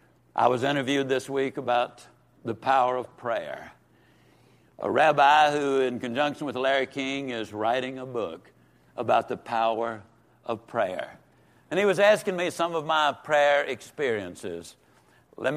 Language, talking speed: English, 145 wpm